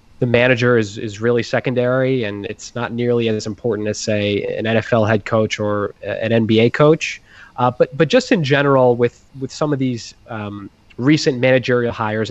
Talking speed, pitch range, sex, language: 180 wpm, 115-165 Hz, male, English